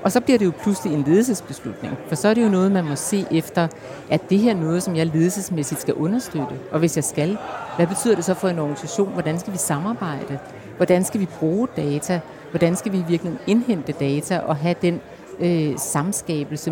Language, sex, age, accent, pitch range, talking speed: Danish, female, 60-79, native, 155-195 Hz, 210 wpm